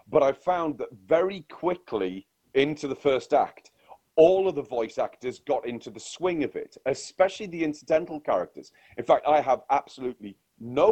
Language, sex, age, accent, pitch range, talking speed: English, male, 40-59, British, 130-190 Hz, 170 wpm